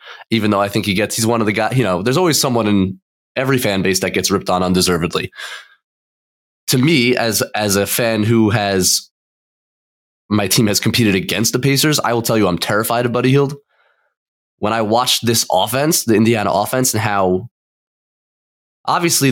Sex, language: male, English